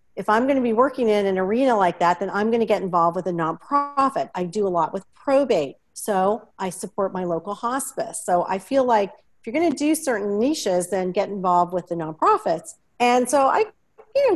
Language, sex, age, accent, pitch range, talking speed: English, female, 40-59, American, 185-270 Hz, 215 wpm